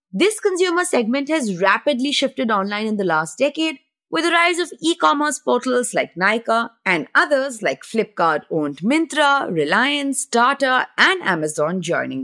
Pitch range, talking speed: 185-295 Hz, 140 wpm